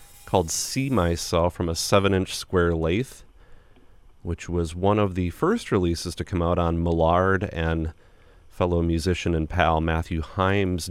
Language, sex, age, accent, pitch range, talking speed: English, male, 30-49, American, 85-105 Hz, 150 wpm